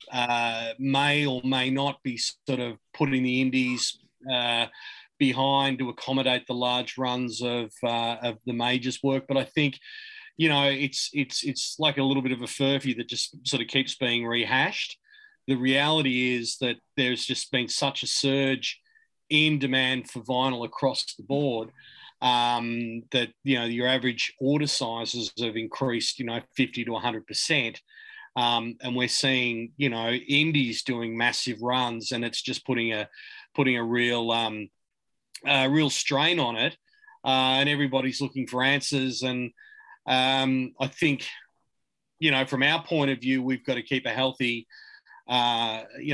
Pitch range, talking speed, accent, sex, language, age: 120-140 Hz, 165 wpm, Australian, male, English, 30-49